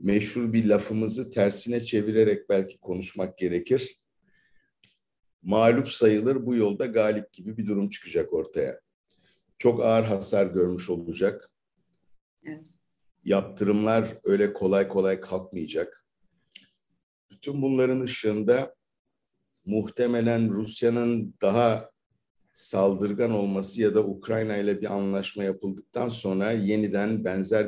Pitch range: 100-120 Hz